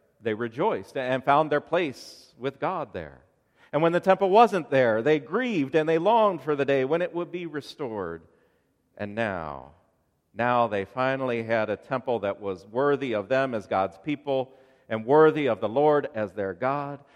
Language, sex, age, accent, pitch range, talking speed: English, male, 40-59, American, 110-165 Hz, 180 wpm